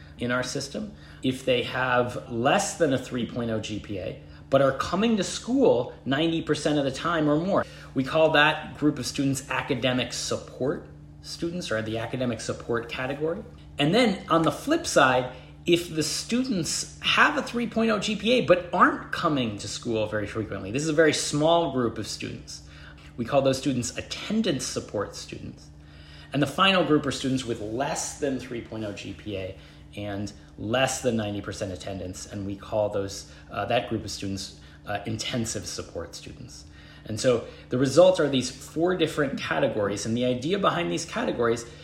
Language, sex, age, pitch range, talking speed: English, male, 30-49, 105-155 Hz, 165 wpm